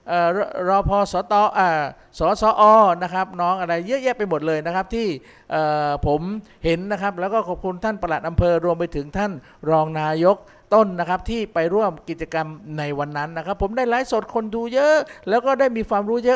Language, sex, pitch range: Thai, male, 170-225 Hz